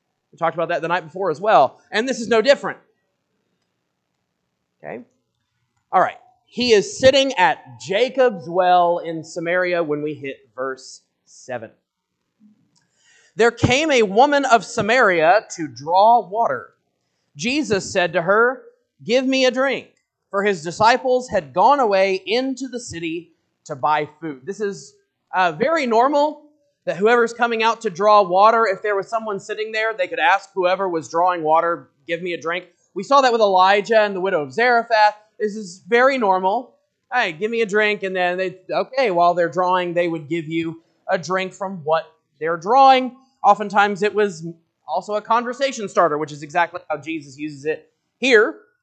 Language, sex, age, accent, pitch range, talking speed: English, male, 30-49, American, 170-240 Hz, 170 wpm